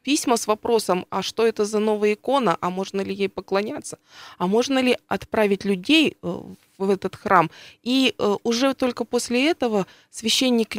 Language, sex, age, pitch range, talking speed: Russian, female, 20-39, 195-245 Hz, 155 wpm